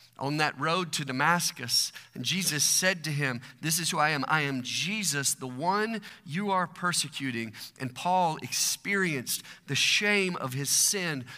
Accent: American